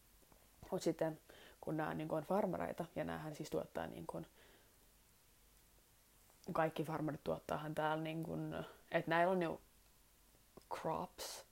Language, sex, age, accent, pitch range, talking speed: Finnish, female, 20-39, native, 150-170 Hz, 125 wpm